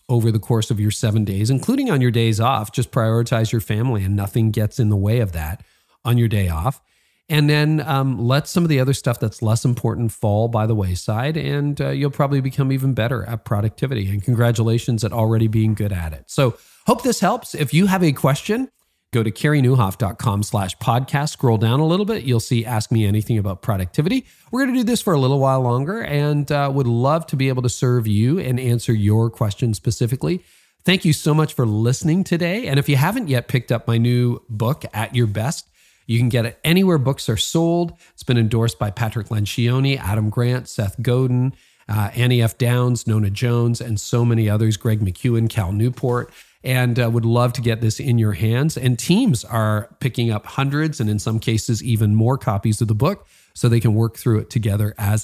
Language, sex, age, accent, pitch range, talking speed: English, male, 40-59, American, 110-135 Hz, 215 wpm